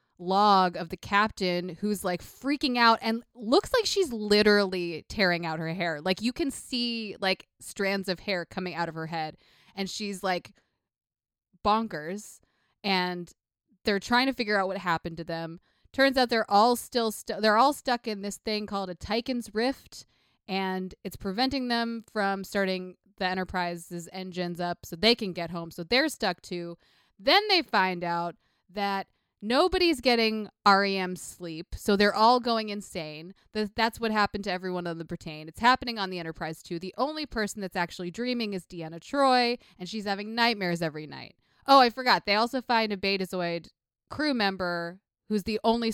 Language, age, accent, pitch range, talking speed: English, 20-39, American, 175-225 Hz, 175 wpm